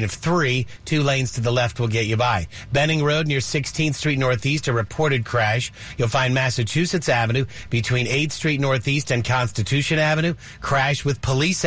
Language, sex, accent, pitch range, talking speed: English, male, American, 120-145 Hz, 175 wpm